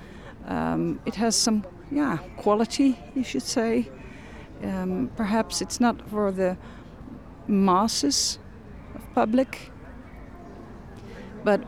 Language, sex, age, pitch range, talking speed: Dutch, female, 40-59, 165-215 Hz, 100 wpm